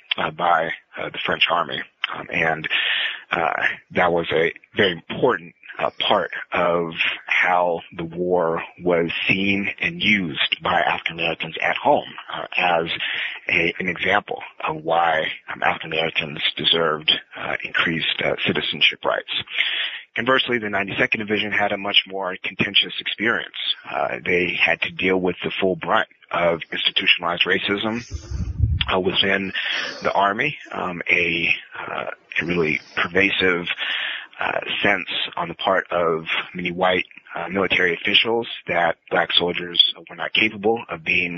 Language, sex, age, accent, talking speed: English, male, 30-49, American, 140 wpm